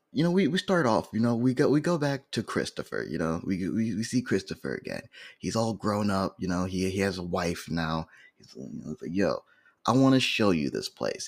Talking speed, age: 245 wpm, 20-39